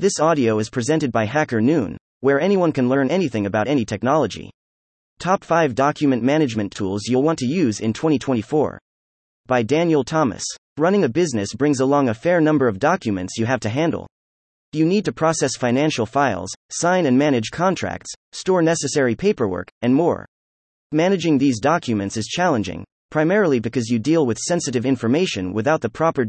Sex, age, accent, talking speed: male, 30-49, American, 165 wpm